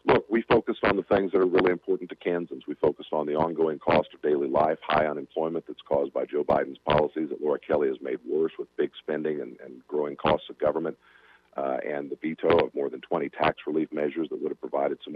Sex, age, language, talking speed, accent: male, 50-69, English, 240 wpm, American